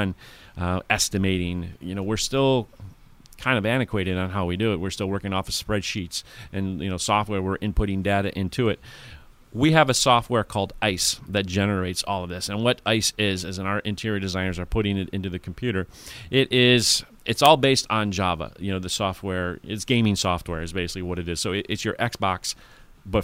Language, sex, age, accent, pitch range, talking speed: English, male, 40-59, American, 95-110 Hz, 205 wpm